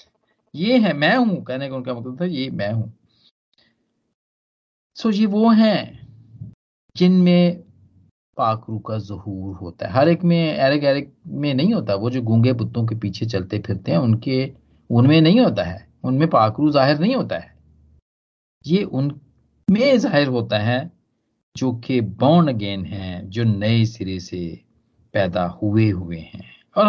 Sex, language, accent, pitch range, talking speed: male, Hindi, native, 110-180 Hz, 150 wpm